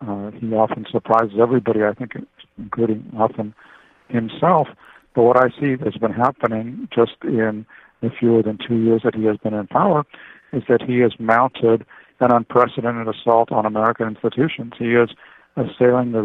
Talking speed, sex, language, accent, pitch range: 165 wpm, male, English, American, 110-120 Hz